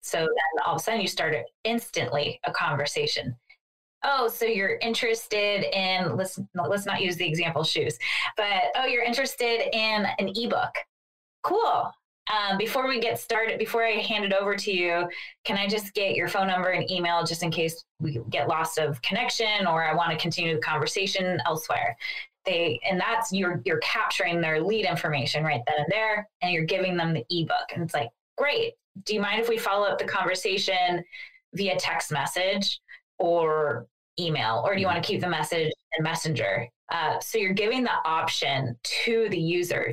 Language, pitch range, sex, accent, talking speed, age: English, 165-220 Hz, female, American, 185 wpm, 20-39